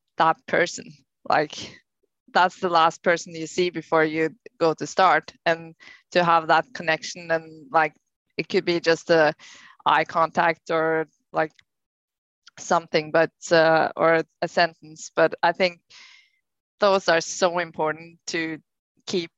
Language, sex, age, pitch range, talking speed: English, female, 20-39, 155-170 Hz, 140 wpm